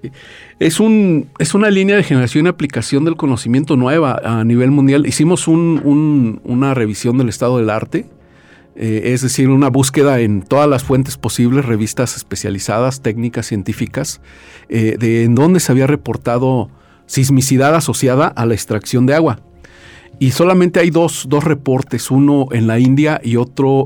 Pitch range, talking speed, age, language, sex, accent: 115-145 Hz, 150 wpm, 50-69, Spanish, male, Mexican